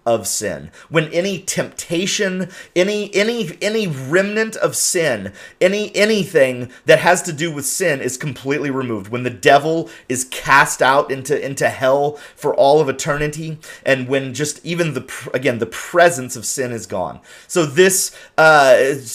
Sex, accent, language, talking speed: male, American, English, 155 wpm